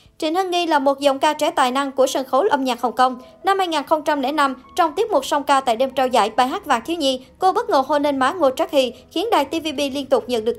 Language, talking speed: Vietnamese, 280 wpm